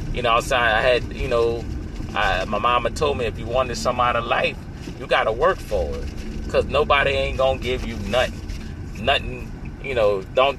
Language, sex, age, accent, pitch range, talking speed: English, male, 30-49, American, 105-155 Hz, 205 wpm